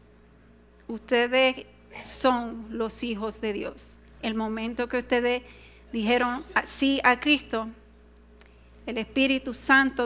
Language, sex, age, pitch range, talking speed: Spanish, female, 40-59, 225-270 Hz, 100 wpm